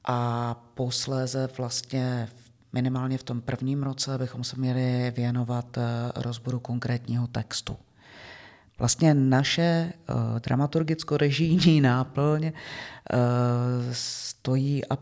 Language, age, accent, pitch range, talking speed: Czech, 40-59, native, 120-140 Hz, 85 wpm